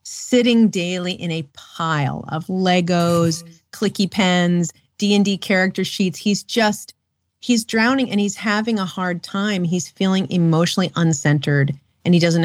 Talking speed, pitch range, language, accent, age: 145 wpm, 155-195 Hz, English, American, 40-59